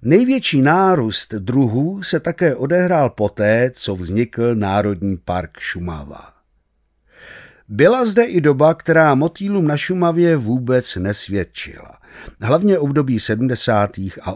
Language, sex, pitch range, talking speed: Czech, male, 105-165 Hz, 110 wpm